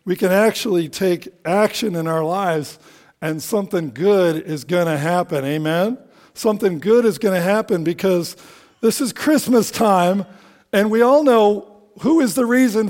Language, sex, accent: English, male, American